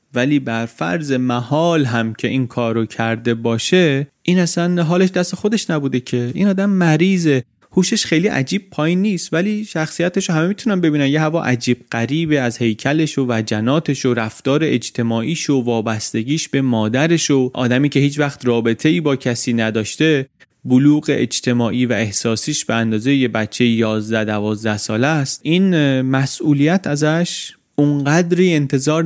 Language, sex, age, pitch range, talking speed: Persian, male, 30-49, 115-155 Hz, 145 wpm